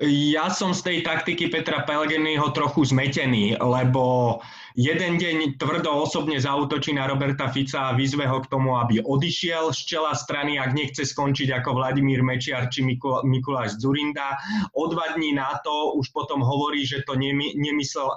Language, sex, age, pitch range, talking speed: Slovak, male, 20-39, 130-155 Hz, 155 wpm